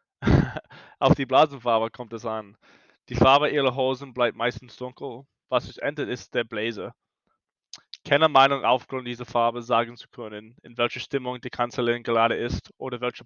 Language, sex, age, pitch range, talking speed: German, male, 20-39, 120-130 Hz, 165 wpm